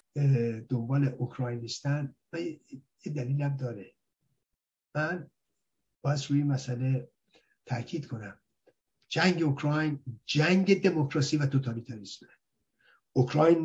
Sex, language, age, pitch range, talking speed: male, Persian, 50-69, 125-155 Hz, 85 wpm